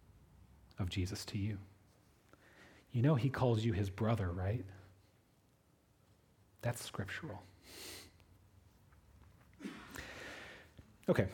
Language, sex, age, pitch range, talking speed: English, male, 30-49, 100-150 Hz, 80 wpm